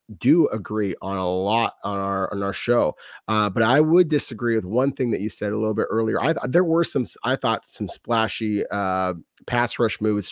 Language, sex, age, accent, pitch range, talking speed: English, male, 30-49, American, 105-130 Hz, 220 wpm